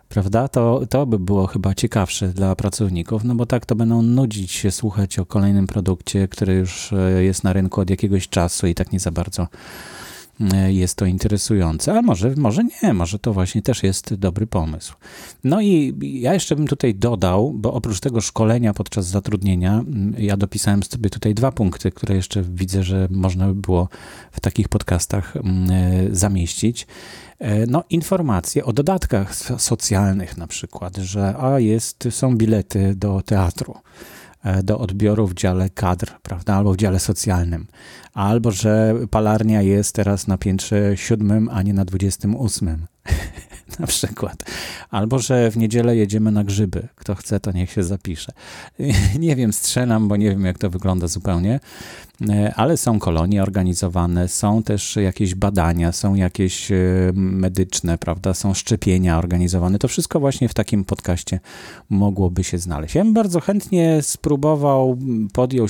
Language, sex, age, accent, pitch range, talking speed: Polish, male, 30-49, native, 95-115 Hz, 155 wpm